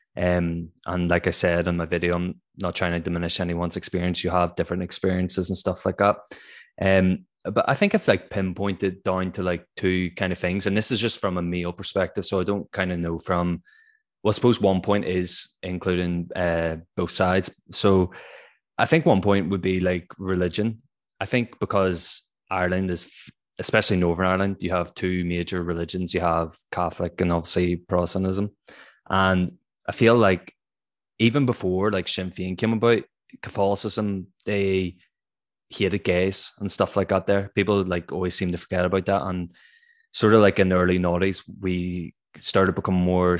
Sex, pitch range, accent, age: male, 90-100 Hz, Irish, 20-39